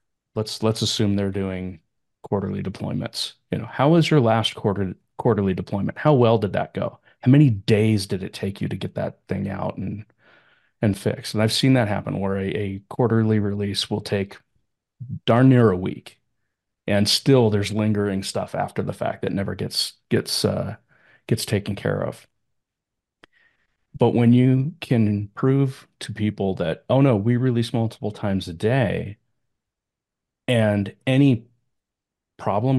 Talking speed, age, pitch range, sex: 160 wpm, 30-49, 100-120 Hz, male